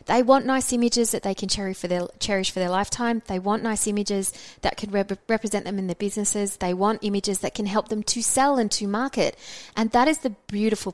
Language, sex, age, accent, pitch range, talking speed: English, female, 20-39, Australian, 195-255 Hz, 220 wpm